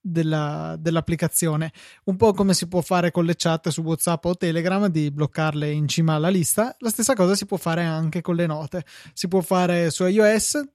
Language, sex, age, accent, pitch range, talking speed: Italian, male, 20-39, native, 155-190 Hz, 195 wpm